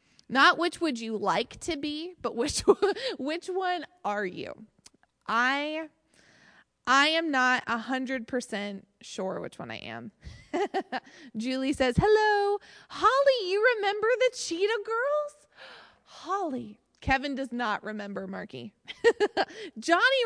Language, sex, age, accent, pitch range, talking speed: English, female, 20-39, American, 230-315 Hz, 115 wpm